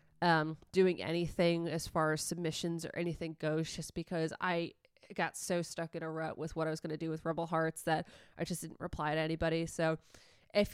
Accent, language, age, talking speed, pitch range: American, English, 20-39, 210 wpm, 160-185 Hz